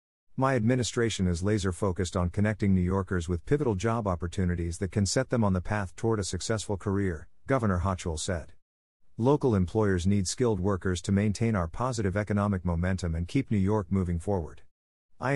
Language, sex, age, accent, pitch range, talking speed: English, male, 50-69, American, 90-110 Hz, 170 wpm